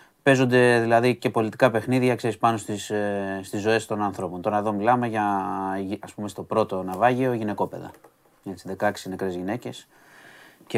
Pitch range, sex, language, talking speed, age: 100-120 Hz, male, Greek, 130 wpm, 30-49